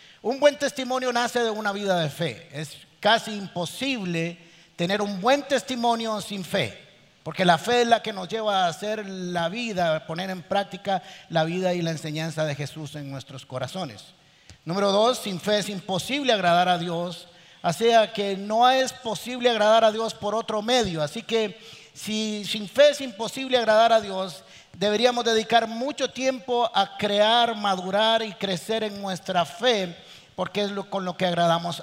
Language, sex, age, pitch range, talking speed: Spanish, male, 50-69, 175-225 Hz, 175 wpm